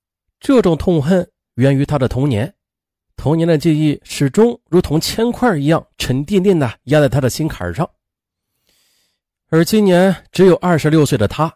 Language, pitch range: Chinese, 110-175 Hz